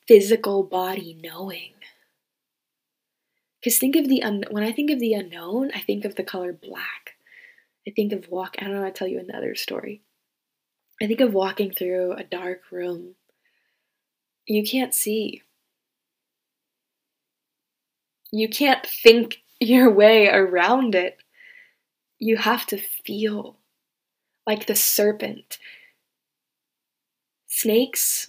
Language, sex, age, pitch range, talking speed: English, female, 10-29, 190-240 Hz, 125 wpm